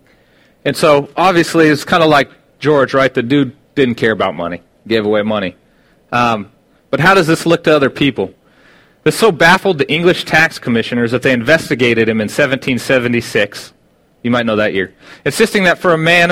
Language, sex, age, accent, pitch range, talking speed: English, male, 30-49, American, 115-160 Hz, 185 wpm